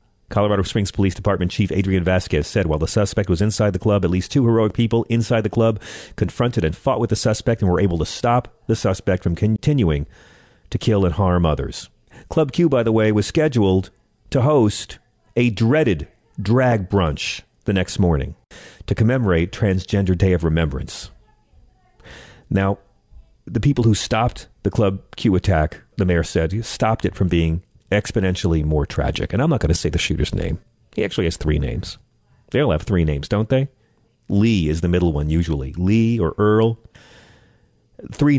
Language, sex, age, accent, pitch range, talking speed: English, male, 40-59, American, 90-120 Hz, 180 wpm